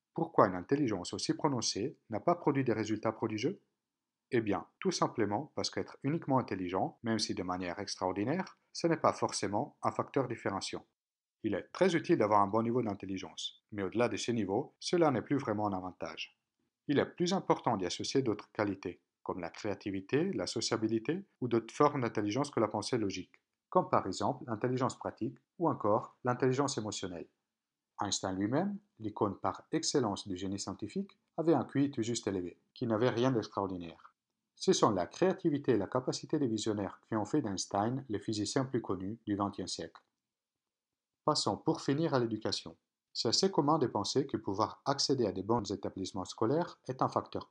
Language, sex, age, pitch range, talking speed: French, male, 50-69, 100-145 Hz, 175 wpm